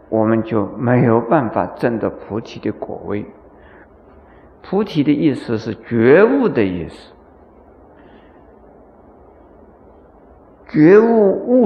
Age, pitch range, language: 50-69, 115-180 Hz, Chinese